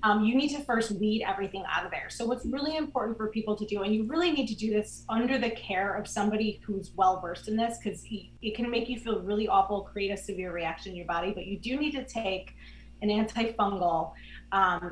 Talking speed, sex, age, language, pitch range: 240 wpm, female, 20-39, English, 195-240 Hz